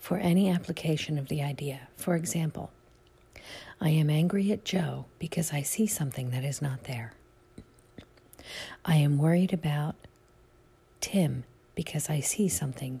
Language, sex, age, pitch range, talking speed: English, female, 50-69, 145-180 Hz, 140 wpm